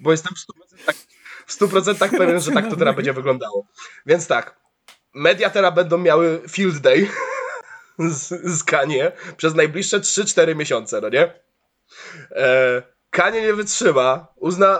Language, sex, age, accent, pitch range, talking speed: Polish, male, 20-39, native, 165-230 Hz, 140 wpm